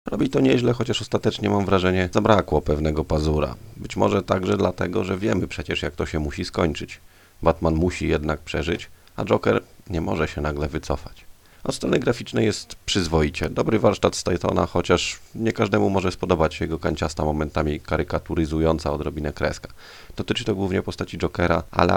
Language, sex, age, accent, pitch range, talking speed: Polish, male, 30-49, native, 80-95 Hz, 165 wpm